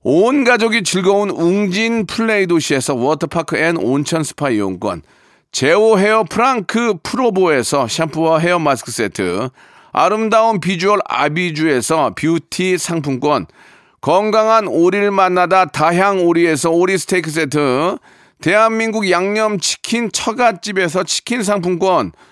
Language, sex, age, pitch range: Korean, male, 40-59, 165-215 Hz